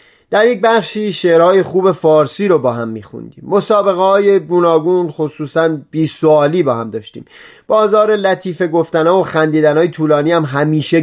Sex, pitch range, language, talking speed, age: male, 135-185 Hz, Persian, 145 wpm, 30-49